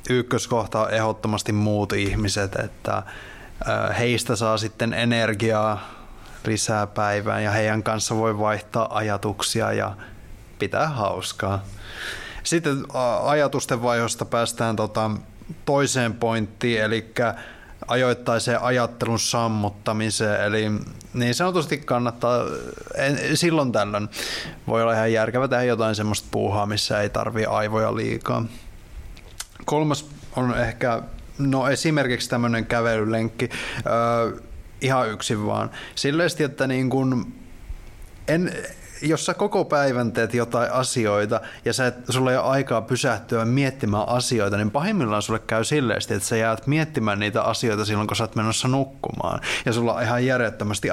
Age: 20-39